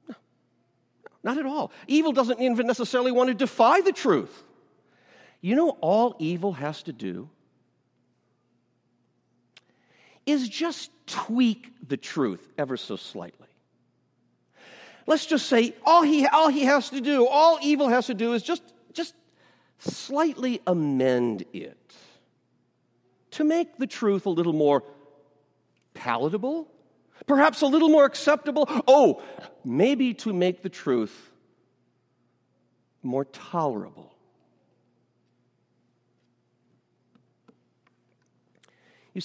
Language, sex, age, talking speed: English, male, 50-69, 105 wpm